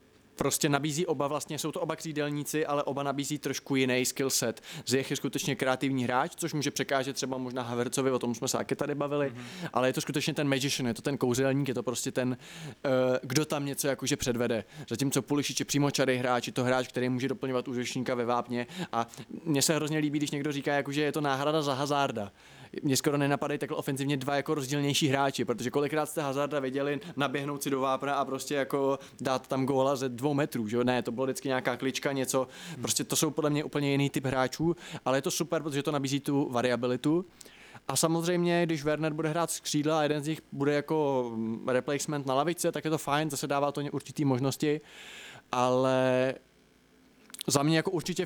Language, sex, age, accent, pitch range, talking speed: Czech, male, 20-39, native, 130-155 Hz, 205 wpm